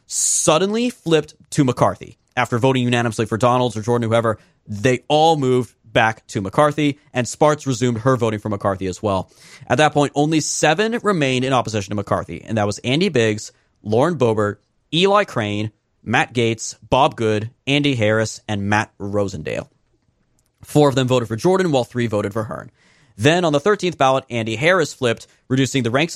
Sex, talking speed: male, 175 wpm